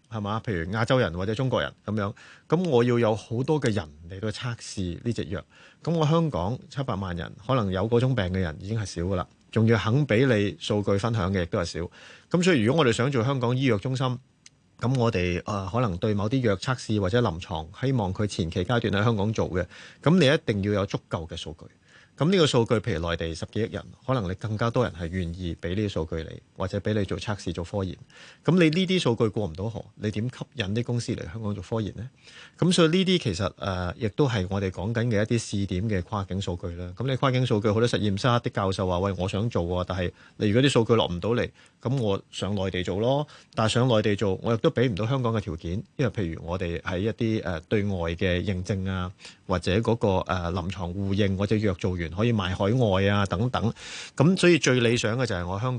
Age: 30-49